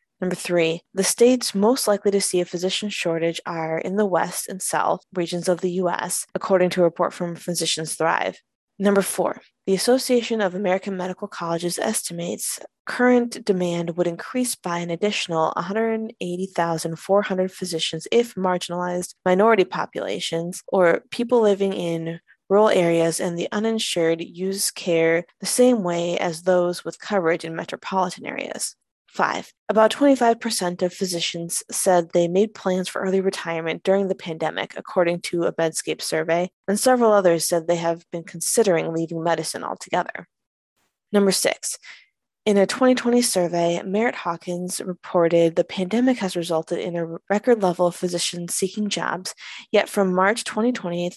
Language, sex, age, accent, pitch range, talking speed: English, female, 20-39, American, 170-205 Hz, 150 wpm